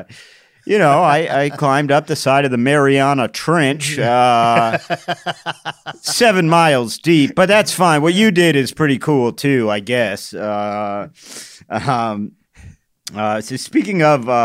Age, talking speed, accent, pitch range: 40-59, 140 wpm, American, 110-150 Hz